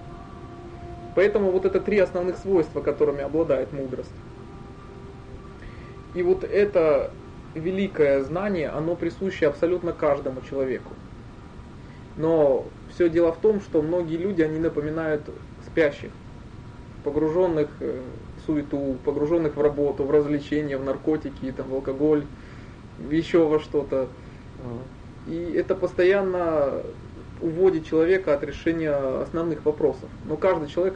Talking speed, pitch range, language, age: 110 wpm, 135-170 Hz, Russian, 20-39